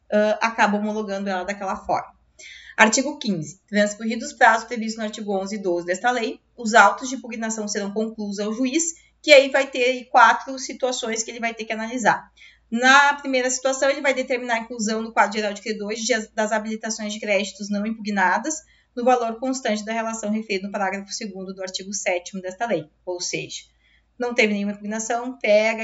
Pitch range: 215-265 Hz